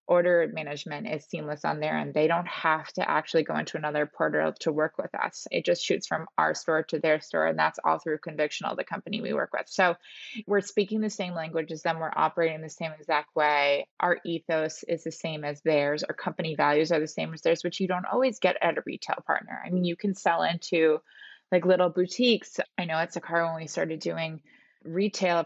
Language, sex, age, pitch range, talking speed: English, female, 20-39, 160-180 Hz, 225 wpm